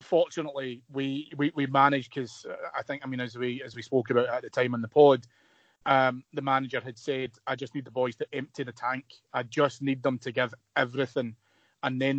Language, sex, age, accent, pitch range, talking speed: English, male, 30-49, British, 125-140 Hz, 220 wpm